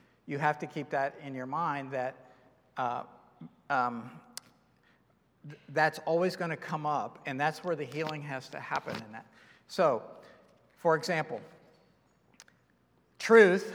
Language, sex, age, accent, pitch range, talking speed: English, male, 50-69, American, 140-175 Hz, 135 wpm